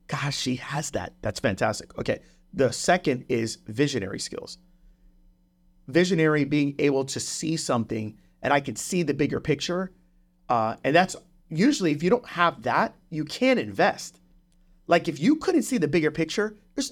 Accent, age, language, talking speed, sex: American, 30-49, English, 165 wpm, male